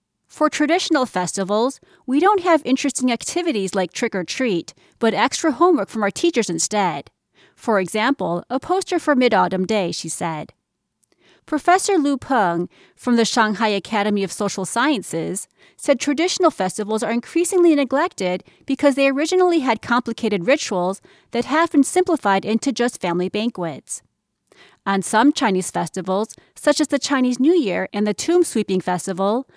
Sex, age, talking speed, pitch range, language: female, 30-49, 145 wpm, 200-290 Hz, English